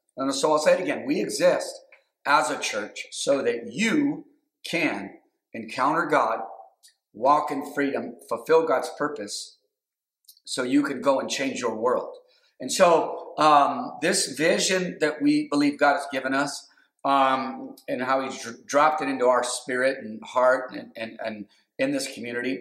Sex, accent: male, American